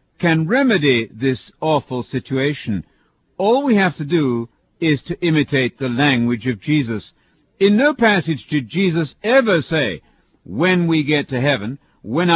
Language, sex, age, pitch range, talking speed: English, male, 60-79, 135-175 Hz, 145 wpm